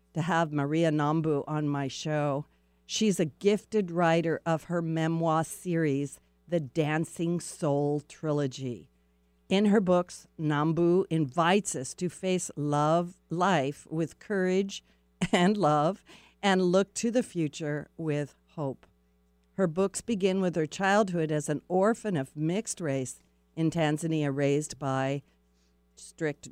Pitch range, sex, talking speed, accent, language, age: 140-180 Hz, female, 130 wpm, American, English, 50-69